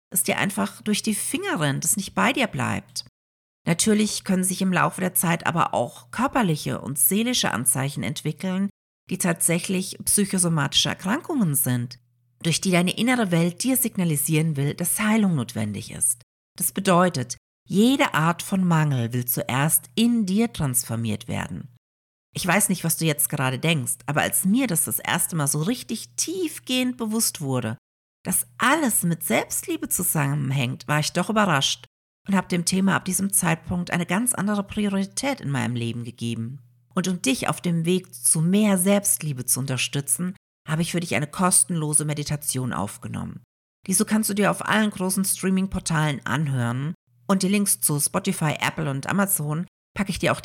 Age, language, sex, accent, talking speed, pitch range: 50-69, German, female, German, 165 wpm, 135-195 Hz